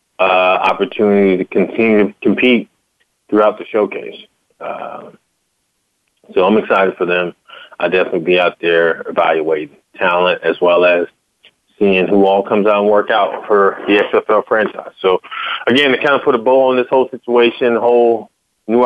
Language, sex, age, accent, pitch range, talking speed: English, male, 20-39, American, 105-125 Hz, 160 wpm